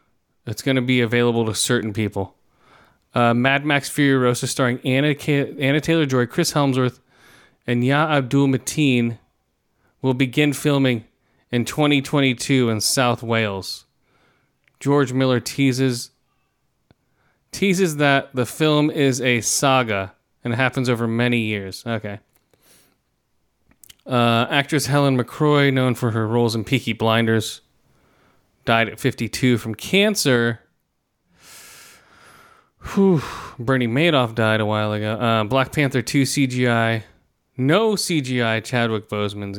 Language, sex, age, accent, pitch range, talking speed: English, male, 30-49, American, 115-140 Hz, 120 wpm